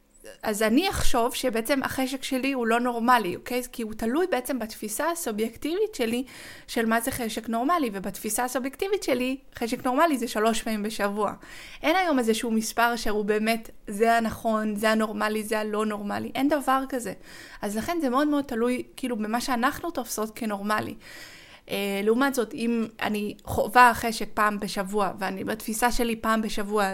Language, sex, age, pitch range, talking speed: Hebrew, female, 20-39, 215-265 Hz, 150 wpm